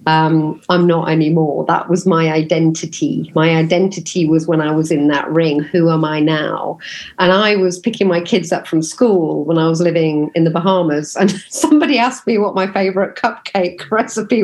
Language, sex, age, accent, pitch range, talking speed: English, female, 40-59, British, 170-255 Hz, 190 wpm